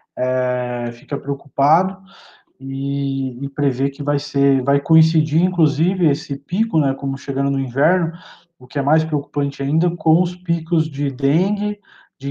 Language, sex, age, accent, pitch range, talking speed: Portuguese, male, 20-39, Brazilian, 140-165 Hz, 145 wpm